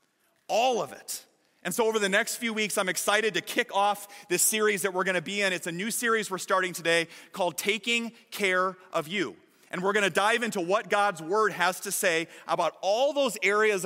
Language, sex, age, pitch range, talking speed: English, male, 30-49, 165-205 Hz, 220 wpm